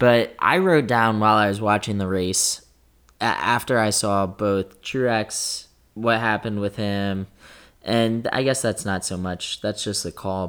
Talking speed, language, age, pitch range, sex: 175 wpm, English, 10-29, 95-120 Hz, male